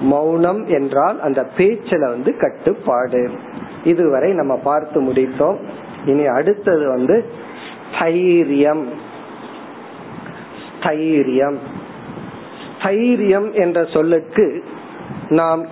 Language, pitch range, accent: Tamil, 150-205 Hz, native